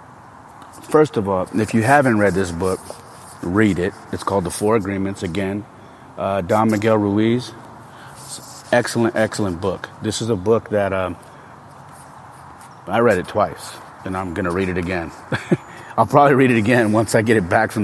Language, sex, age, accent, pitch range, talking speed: English, male, 30-49, American, 95-115 Hz, 175 wpm